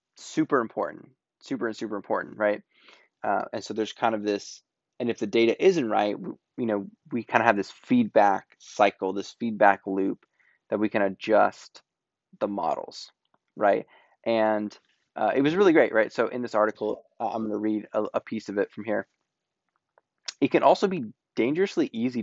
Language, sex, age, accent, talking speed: English, male, 20-39, American, 180 wpm